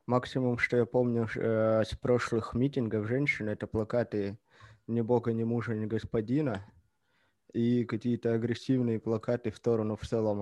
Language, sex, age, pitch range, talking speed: Russian, male, 20-39, 110-130 Hz, 145 wpm